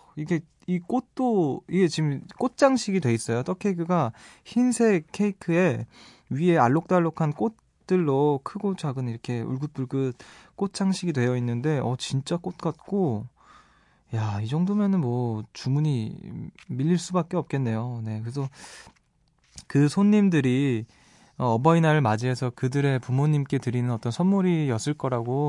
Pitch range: 120-165 Hz